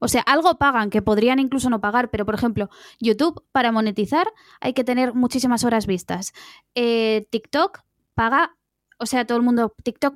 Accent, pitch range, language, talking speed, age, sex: Spanish, 230-275 Hz, Spanish, 175 wpm, 20-39, female